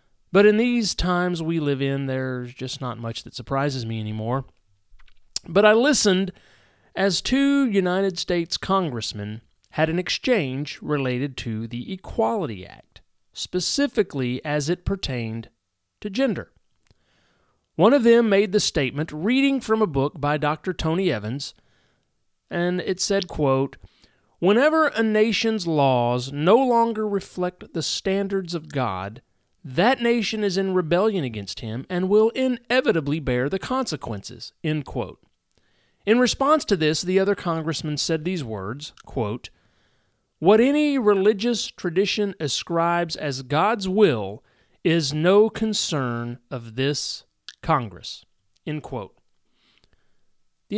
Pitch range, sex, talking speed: 125-205 Hz, male, 120 wpm